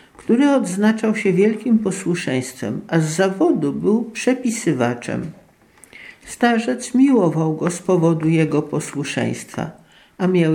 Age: 50-69